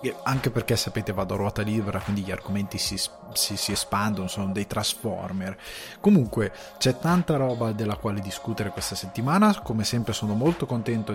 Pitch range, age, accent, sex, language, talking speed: 105-130 Hz, 20-39, native, male, Italian, 165 wpm